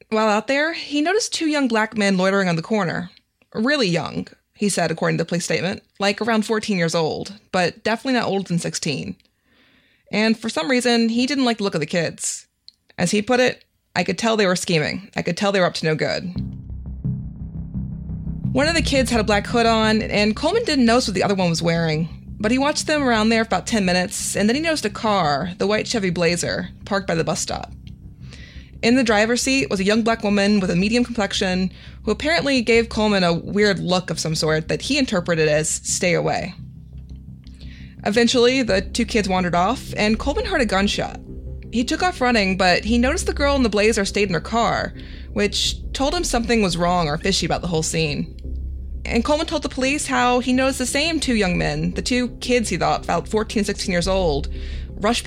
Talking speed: 215 wpm